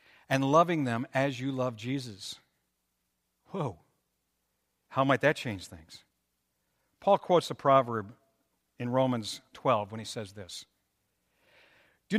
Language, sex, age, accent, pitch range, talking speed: English, male, 60-79, American, 105-160 Hz, 125 wpm